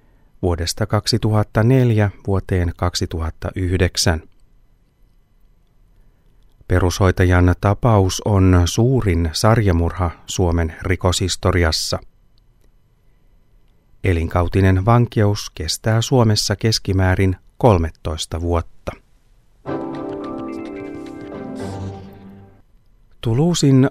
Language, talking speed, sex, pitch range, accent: Finnish, 50 wpm, male, 90-110 Hz, native